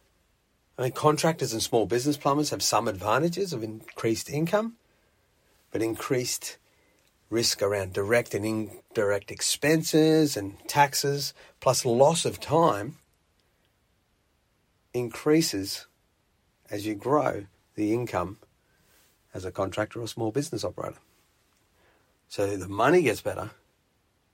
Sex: male